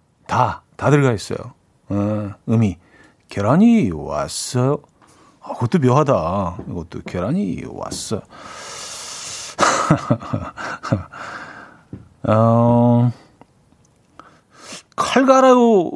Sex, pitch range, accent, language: male, 115-185 Hz, native, Korean